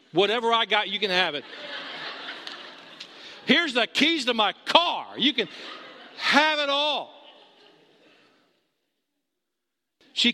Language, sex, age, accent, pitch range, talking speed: English, male, 50-69, American, 215-280 Hz, 110 wpm